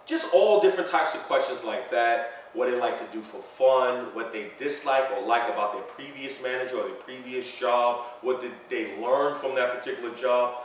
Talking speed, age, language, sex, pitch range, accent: 205 wpm, 30-49, English, male, 125-180 Hz, American